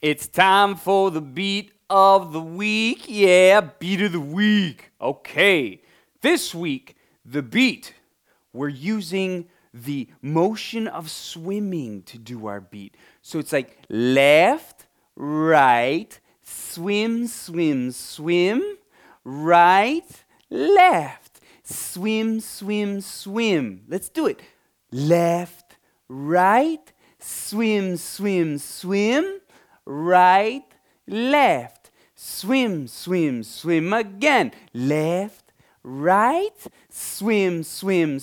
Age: 30-49